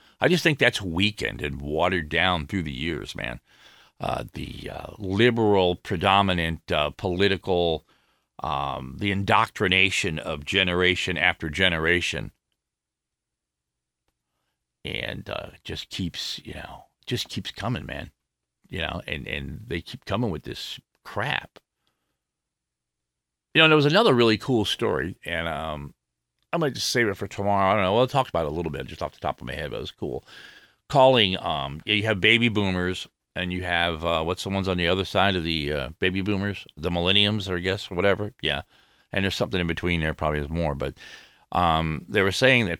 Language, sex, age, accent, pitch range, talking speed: English, male, 50-69, American, 75-100 Hz, 180 wpm